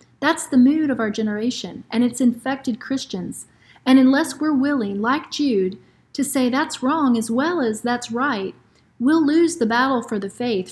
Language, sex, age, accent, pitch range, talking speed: English, female, 40-59, American, 225-275 Hz, 180 wpm